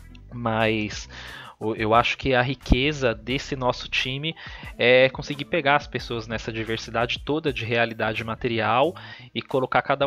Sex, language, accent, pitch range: male, Portuguese, Brazilian, 110-140 Hz